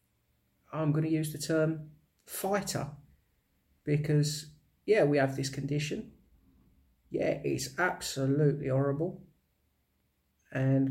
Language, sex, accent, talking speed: English, male, British, 95 wpm